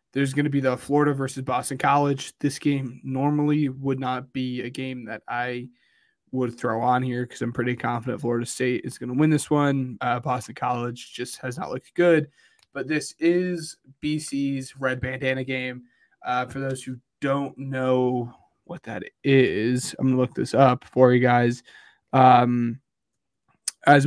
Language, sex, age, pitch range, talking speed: English, male, 20-39, 125-135 Hz, 175 wpm